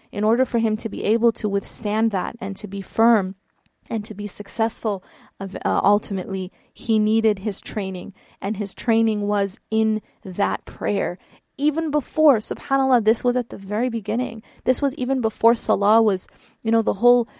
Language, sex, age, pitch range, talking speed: English, female, 20-39, 200-235 Hz, 170 wpm